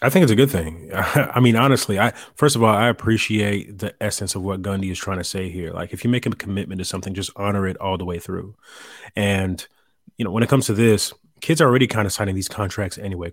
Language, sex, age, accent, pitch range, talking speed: English, male, 30-49, American, 95-110 Hz, 260 wpm